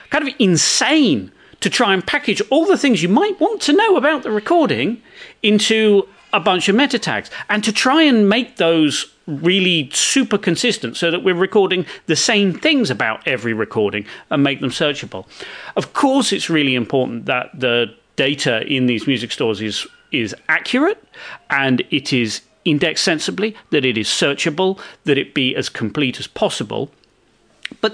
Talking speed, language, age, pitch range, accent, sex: 170 wpm, English, 40-59, 135-220 Hz, British, male